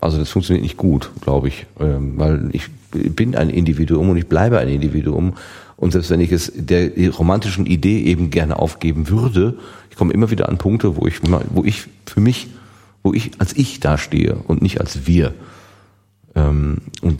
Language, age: German, 40-59